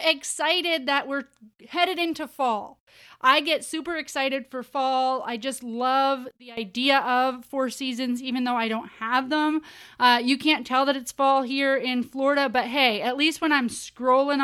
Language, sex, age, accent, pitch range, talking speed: English, female, 30-49, American, 240-285 Hz, 180 wpm